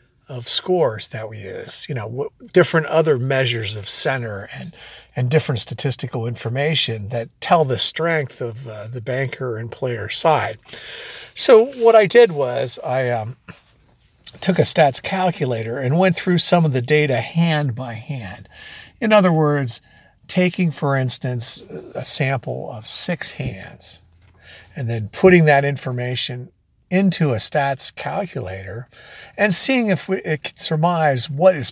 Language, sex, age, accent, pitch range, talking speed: English, male, 50-69, American, 120-160 Hz, 145 wpm